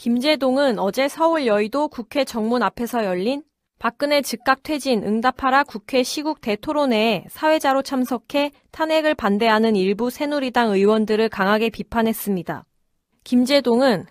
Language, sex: Korean, female